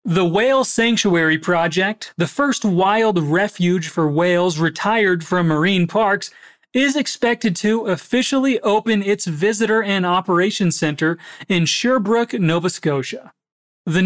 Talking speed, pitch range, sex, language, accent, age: 125 wpm, 165-215 Hz, male, Portuguese, American, 30-49